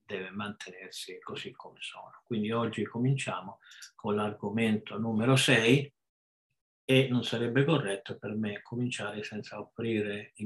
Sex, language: male, Italian